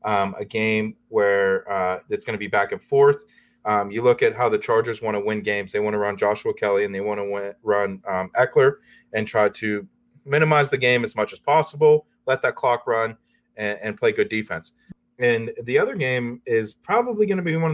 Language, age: English, 20-39